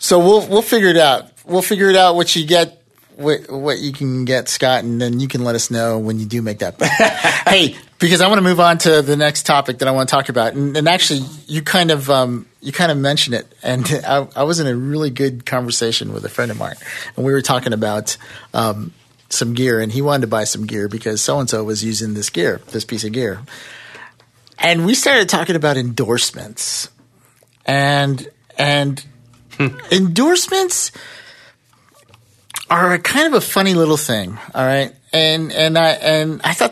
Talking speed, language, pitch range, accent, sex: 205 wpm, English, 120-155 Hz, American, male